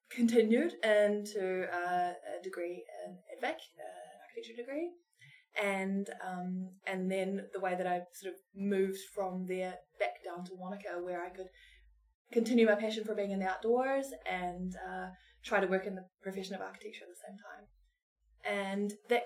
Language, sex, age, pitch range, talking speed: English, female, 20-39, 180-215 Hz, 160 wpm